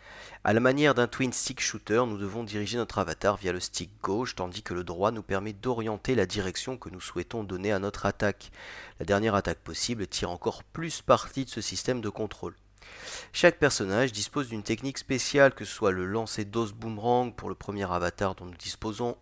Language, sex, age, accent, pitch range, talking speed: French, male, 30-49, French, 95-120 Hz, 205 wpm